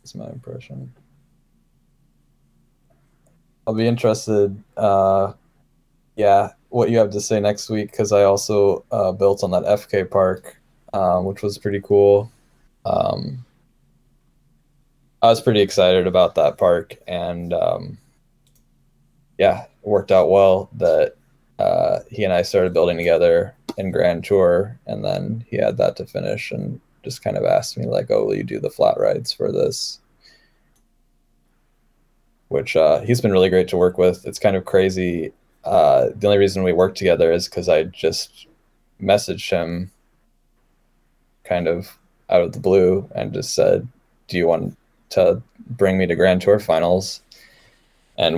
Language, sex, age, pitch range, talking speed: English, male, 20-39, 95-115 Hz, 155 wpm